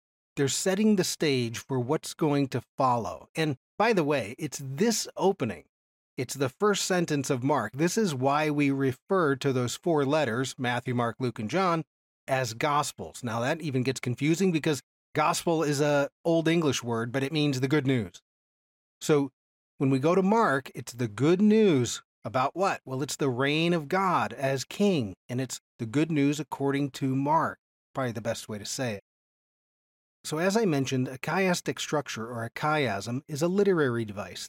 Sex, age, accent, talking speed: male, 40-59, American, 185 wpm